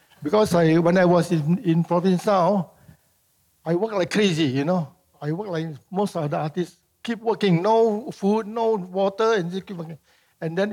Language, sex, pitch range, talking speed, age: English, male, 155-200 Hz, 185 wpm, 60-79